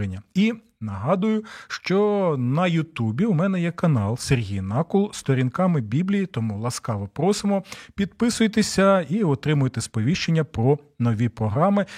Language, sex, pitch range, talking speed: Ukrainian, male, 115-190 Hz, 120 wpm